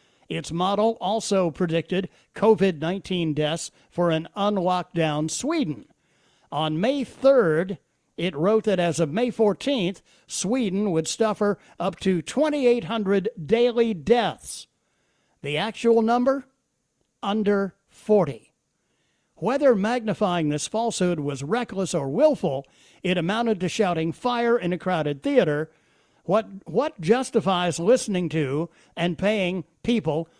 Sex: male